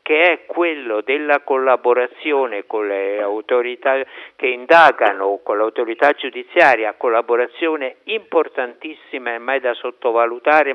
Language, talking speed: Italian, 105 wpm